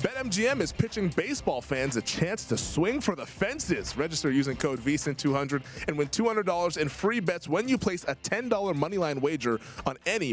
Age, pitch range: 20-39, 135-175 Hz